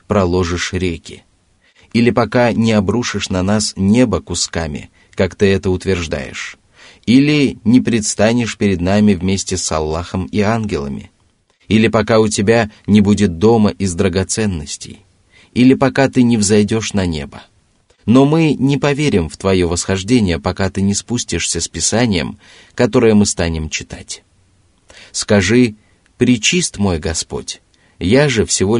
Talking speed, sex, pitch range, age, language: 135 wpm, male, 95-115 Hz, 30-49, Russian